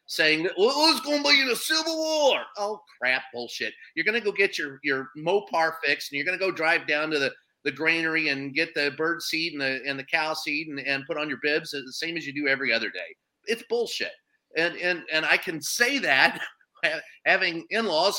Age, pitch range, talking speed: 40-59, 155-230 Hz, 230 wpm